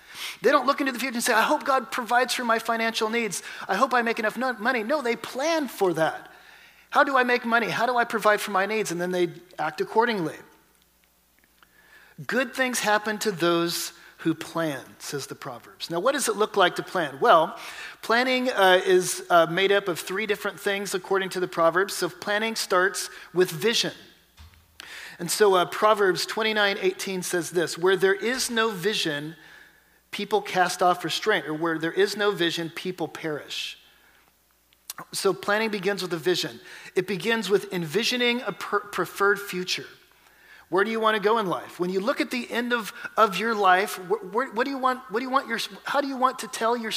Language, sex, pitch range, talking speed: English, male, 180-230 Hz, 185 wpm